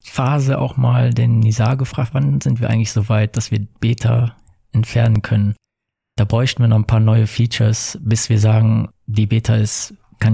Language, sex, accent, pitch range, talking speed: German, male, German, 110-125 Hz, 185 wpm